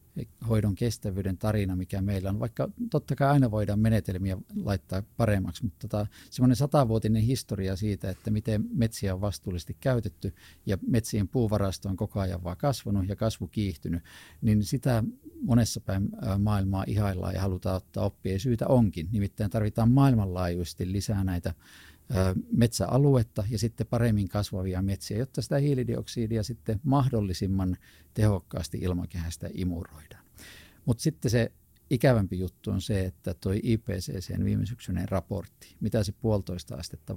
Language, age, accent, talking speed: Finnish, 50-69, native, 135 wpm